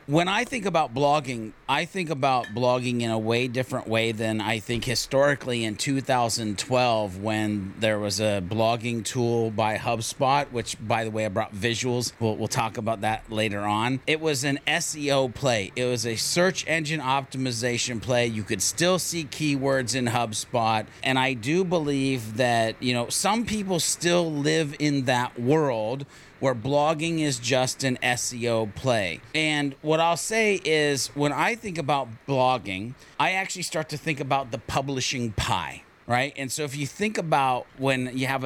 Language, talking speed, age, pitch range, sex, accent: English, 175 wpm, 30-49, 120-155 Hz, male, American